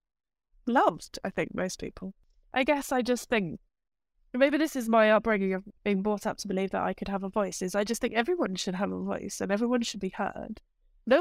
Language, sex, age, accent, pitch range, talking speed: English, female, 10-29, British, 180-220 Hz, 225 wpm